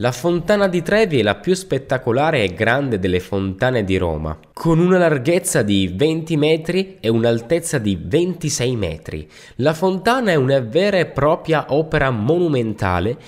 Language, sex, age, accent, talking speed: Italian, male, 10-29, native, 155 wpm